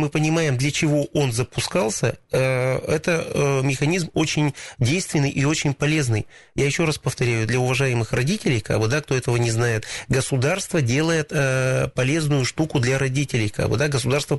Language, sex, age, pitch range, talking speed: Russian, male, 30-49, 125-155 Hz, 140 wpm